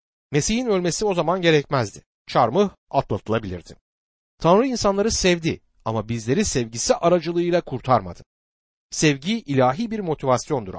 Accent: native